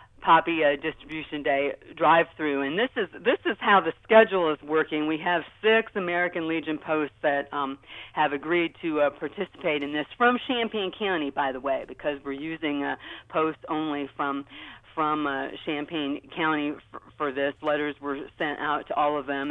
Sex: female